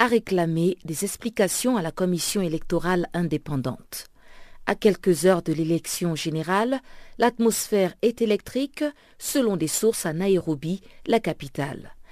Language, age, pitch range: French, 50-69, 170-230 Hz